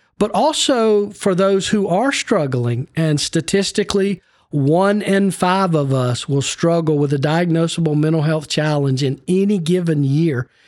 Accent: American